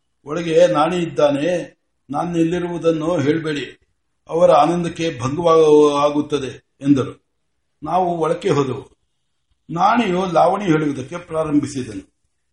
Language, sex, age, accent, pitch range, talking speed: Kannada, male, 60-79, native, 145-195 Hz, 80 wpm